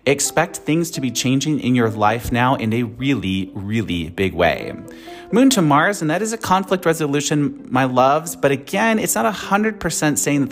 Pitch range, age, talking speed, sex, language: 120-175 Hz, 30-49, 190 wpm, male, English